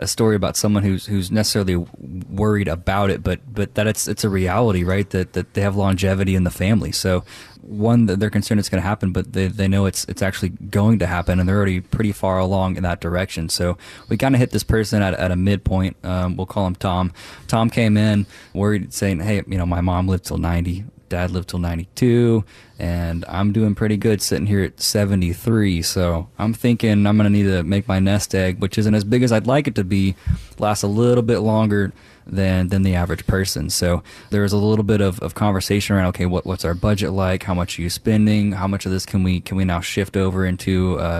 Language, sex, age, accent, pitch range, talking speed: English, male, 20-39, American, 90-105 Hz, 235 wpm